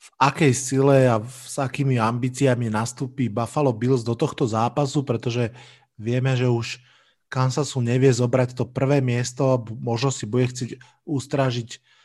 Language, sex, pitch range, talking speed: Slovak, male, 120-135 Hz, 140 wpm